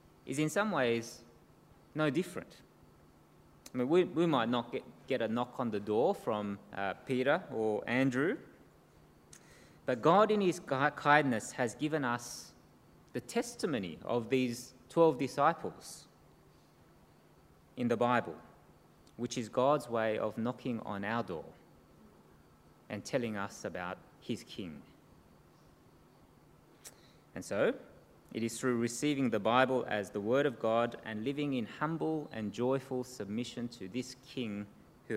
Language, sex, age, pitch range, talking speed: English, male, 20-39, 105-130 Hz, 135 wpm